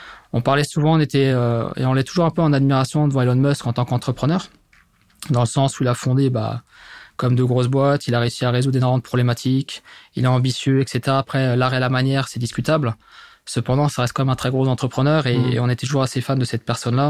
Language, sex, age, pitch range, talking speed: French, male, 20-39, 120-140 Hz, 240 wpm